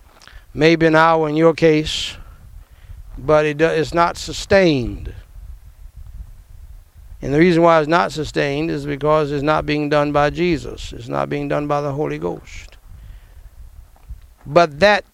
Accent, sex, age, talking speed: American, male, 60-79, 140 wpm